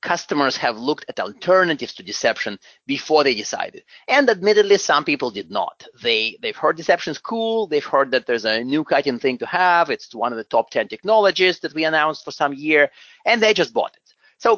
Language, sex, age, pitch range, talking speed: English, male, 30-49, 145-245 Hz, 215 wpm